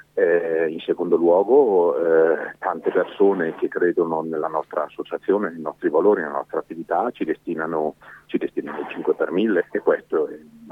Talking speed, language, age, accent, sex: 155 wpm, Italian, 40-59, native, male